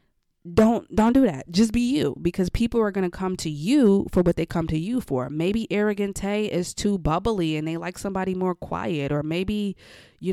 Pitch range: 160-200 Hz